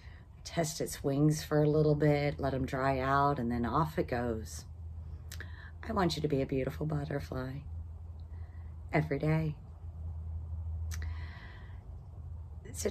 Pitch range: 90-150 Hz